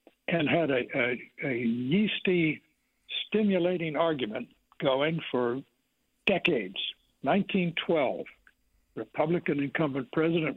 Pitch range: 145-175 Hz